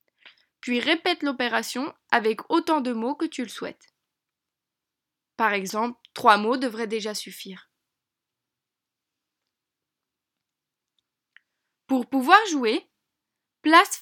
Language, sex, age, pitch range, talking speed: French, female, 20-39, 245-325 Hz, 95 wpm